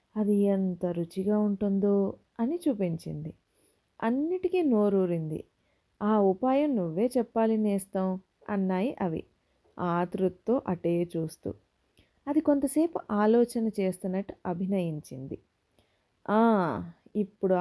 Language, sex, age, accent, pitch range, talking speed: Telugu, female, 30-49, native, 185-245 Hz, 80 wpm